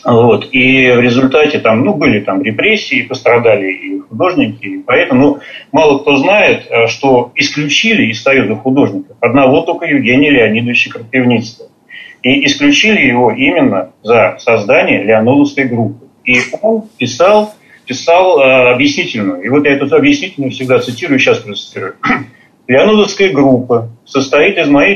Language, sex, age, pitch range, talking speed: Russian, male, 40-59, 120-205 Hz, 135 wpm